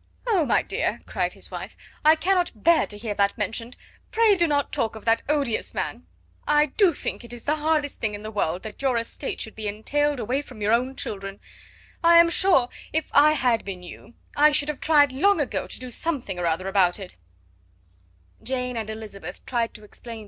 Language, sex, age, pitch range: Chinese, female, 20-39, 200-275 Hz